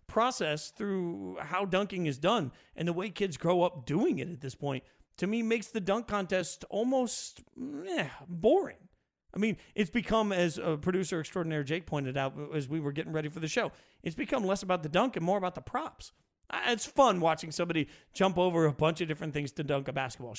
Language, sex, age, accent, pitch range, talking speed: English, male, 40-59, American, 145-195 Hz, 210 wpm